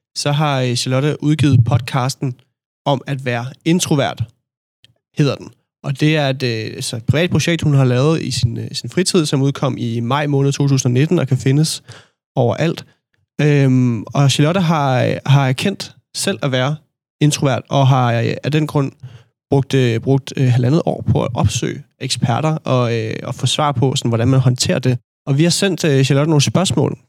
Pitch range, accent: 125-150 Hz, native